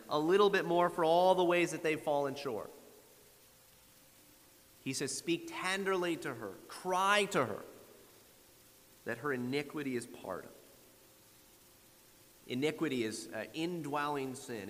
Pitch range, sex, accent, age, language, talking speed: 125-165 Hz, male, American, 30-49, English, 135 wpm